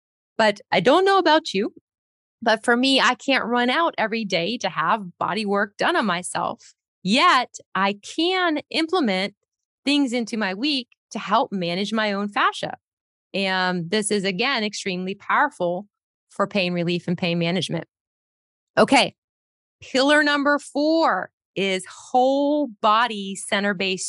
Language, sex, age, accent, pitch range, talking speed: English, female, 20-39, American, 190-260 Hz, 140 wpm